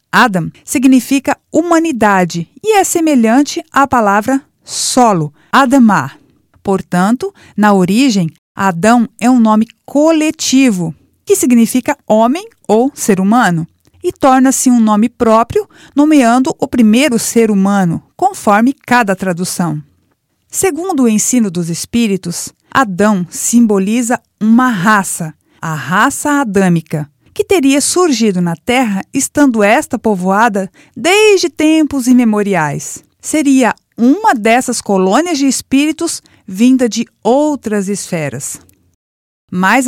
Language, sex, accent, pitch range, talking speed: Portuguese, female, Brazilian, 195-275 Hz, 105 wpm